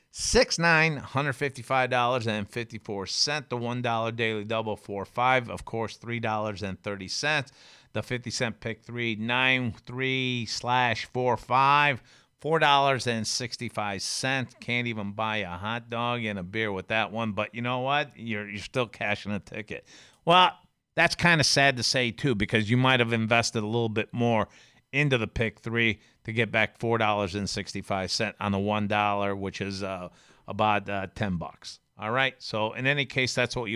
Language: English